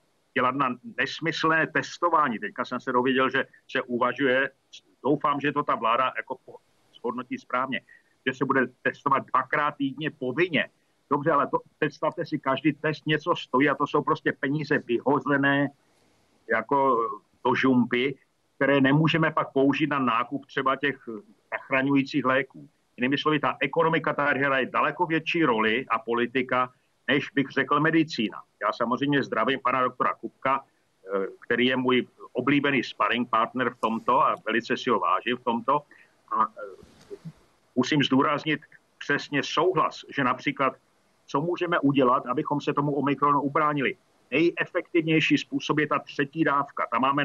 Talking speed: 140 wpm